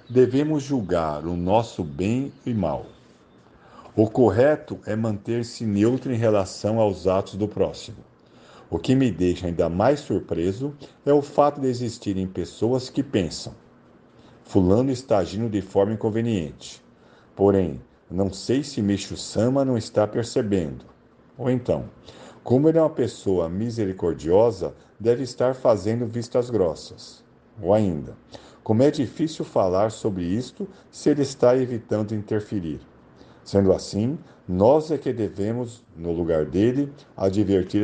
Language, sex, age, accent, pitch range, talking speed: Portuguese, male, 50-69, Brazilian, 95-130 Hz, 135 wpm